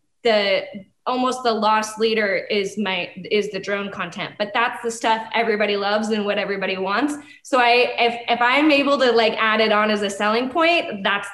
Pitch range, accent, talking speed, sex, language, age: 210-250 Hz, American, 195 wpm, female, English, 20-39